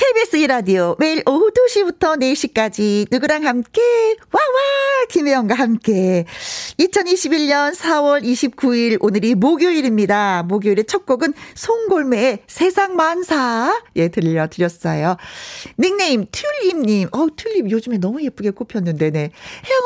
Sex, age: female, 40-59